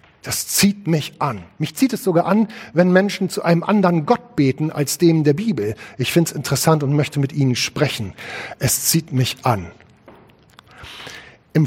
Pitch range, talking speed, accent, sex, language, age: 140-185 Hz, 175 wpm, German, male, German, 40-59